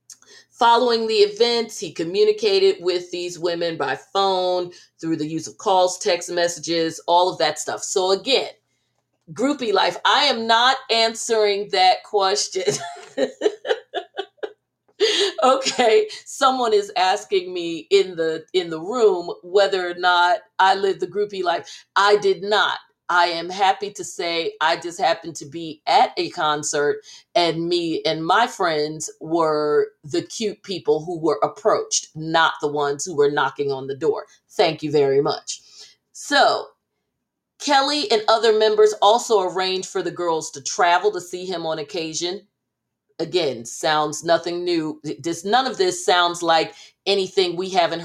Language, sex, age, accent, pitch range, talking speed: English, female, 40-59, American, 165-240 Hz, 150 wpm